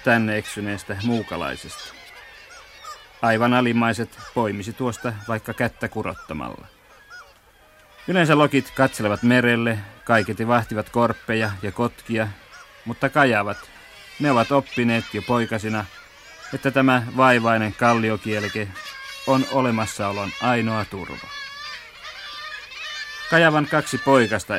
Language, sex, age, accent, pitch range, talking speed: Finnish, male, 30-49, native, 105-130 Hz, 90 wpm